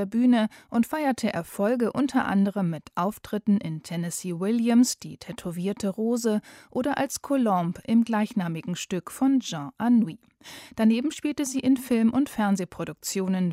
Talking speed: 140 wpm